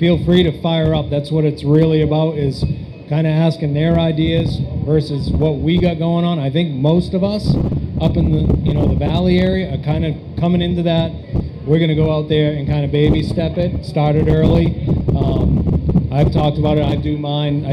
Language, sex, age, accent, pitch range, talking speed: English, male, 30-49, American, 145-165 Hz, 215 wpm